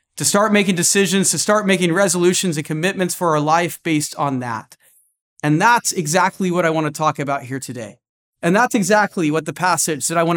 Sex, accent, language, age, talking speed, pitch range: male, American, English, 30-49, 210 wpm, 155-200 Hz